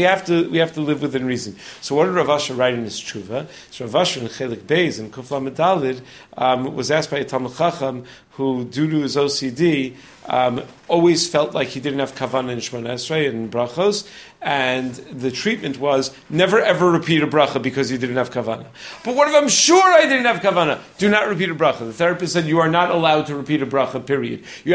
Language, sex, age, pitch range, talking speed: English, male, 40-59, 130-170 Hz, 225 wpm